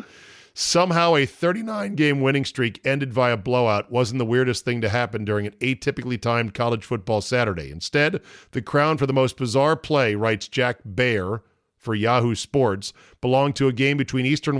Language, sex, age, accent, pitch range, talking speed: English, male, 40-59, American, 125-160 Hz, 170 wpm